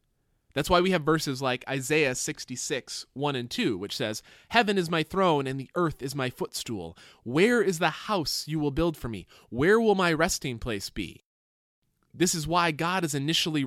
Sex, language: male, English